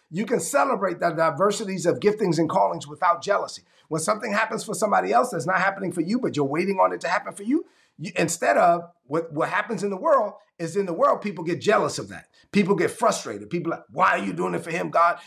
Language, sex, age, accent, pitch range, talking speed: English, male, 30-49, American, 160-200 Hz, 250 wpm